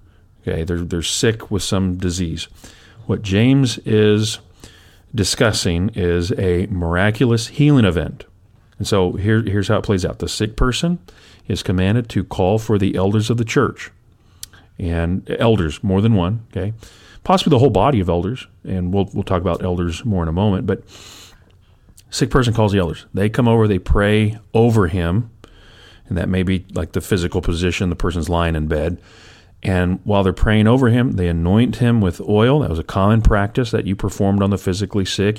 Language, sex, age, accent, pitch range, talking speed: English, male, 40-59, American, 90-110 Hz, 185 wpm